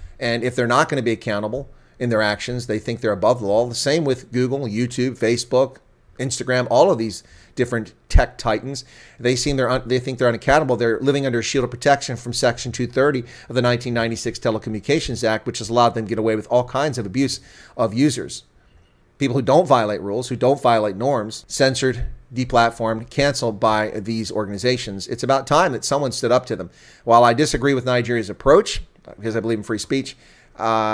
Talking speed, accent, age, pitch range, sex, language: 200 wpm, American, 40-59, 110-130 Hz, male, English